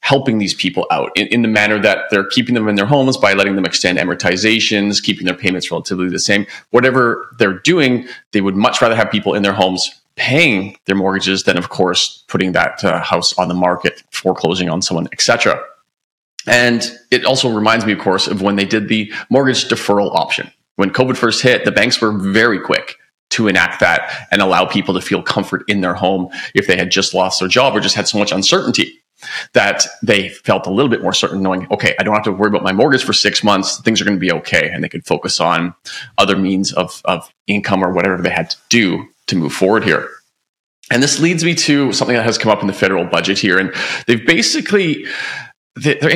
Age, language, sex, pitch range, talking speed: 30-49, English, male, 95-125 Hz, 220 wpm